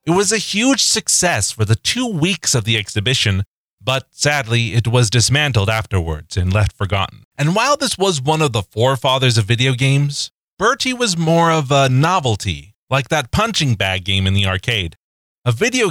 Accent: American